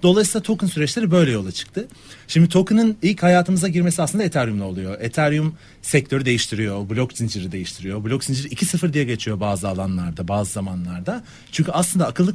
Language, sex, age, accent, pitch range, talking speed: Turkish, male, 40-59, native, 110-165 Hz, 155 wpm